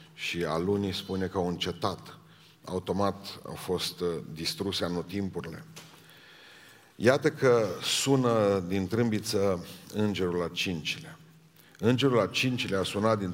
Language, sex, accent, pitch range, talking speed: Romanian, male, native, 95-115 Hz, 110 wpm